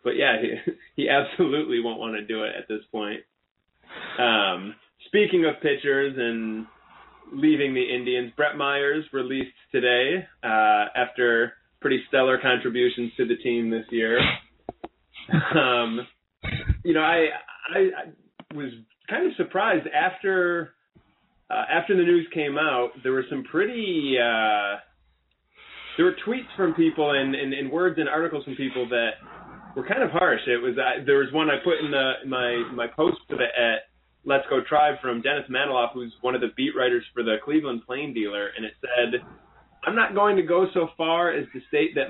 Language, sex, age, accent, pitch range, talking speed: English, male, 20-39, American, 120-175 Hz, 180 wpm